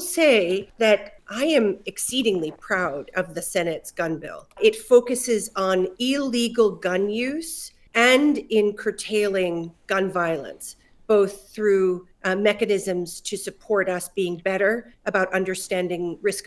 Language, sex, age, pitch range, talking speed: English, female, 40-59, 185-245 Hz, 125 wpm